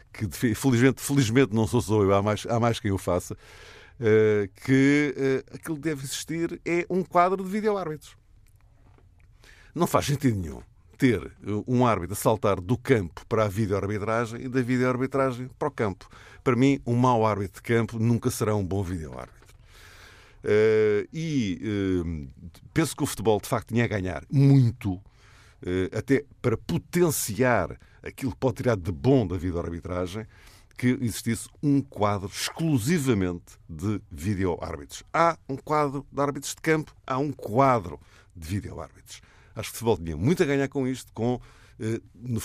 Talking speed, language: 165 wpm, Portuguese